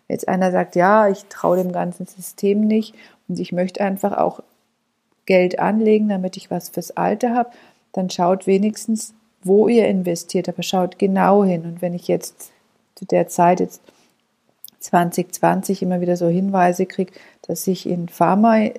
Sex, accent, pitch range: female, German, 180-210 Hz